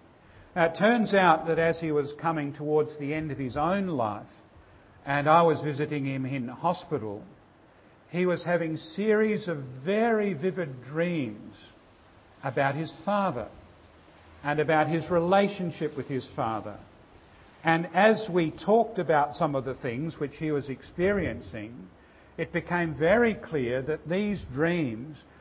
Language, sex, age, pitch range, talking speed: English, male, 50-69, 140-175 Hz, 145 wpm